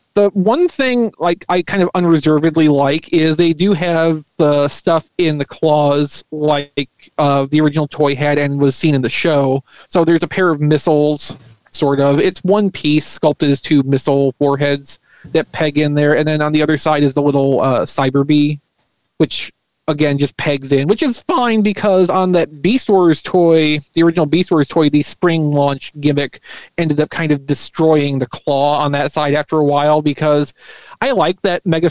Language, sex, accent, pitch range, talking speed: English, male, American, 145-170 Hz, 195 wpm